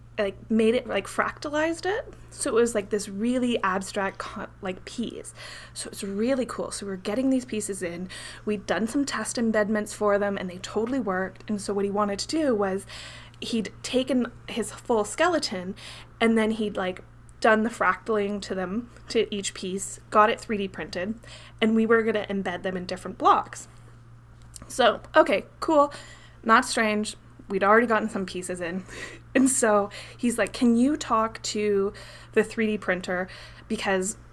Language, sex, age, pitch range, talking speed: English, female, 20-39, 195-235 Hz, 170 wpm